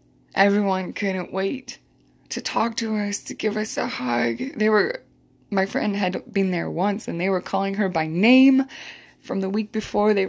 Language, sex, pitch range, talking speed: English, female, 175-240 Hz, 185 wpm